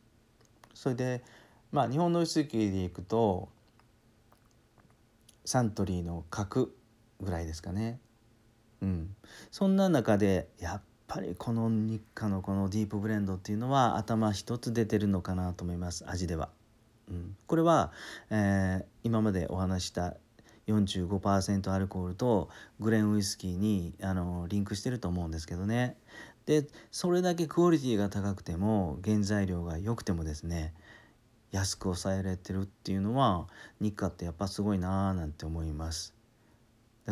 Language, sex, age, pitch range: Japanese, male, 40-59, 95-115 Hz